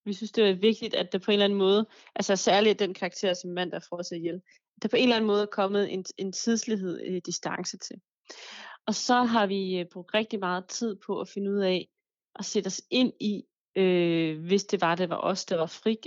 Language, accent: Danish, native